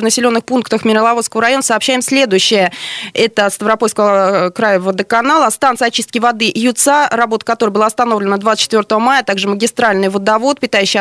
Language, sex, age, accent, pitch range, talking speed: Russian, female, 20-39, native, 195-240 Hz, 135 wpm